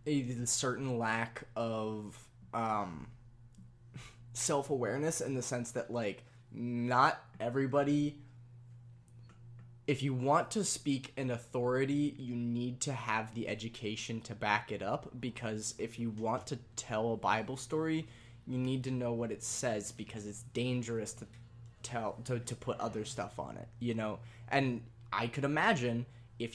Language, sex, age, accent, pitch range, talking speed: English, male, 10-29, American, 115-135 Hz, 145 wpm